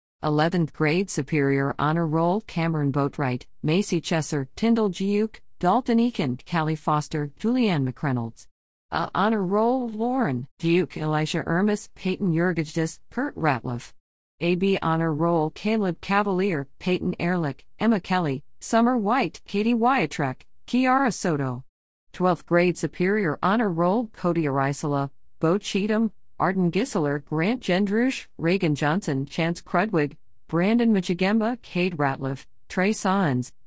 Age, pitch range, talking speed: 40-59, 155-205 Hz, 120 wpm